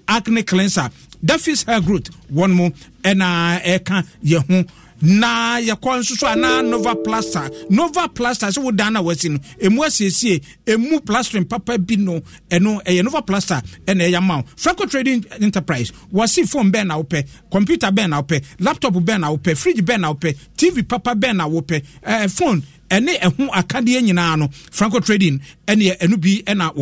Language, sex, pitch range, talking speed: English, male, 170-215 Hz, 185 wpm